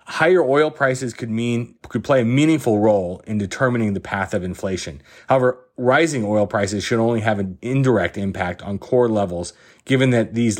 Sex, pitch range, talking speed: male, 100-120 Hz, 180 wpm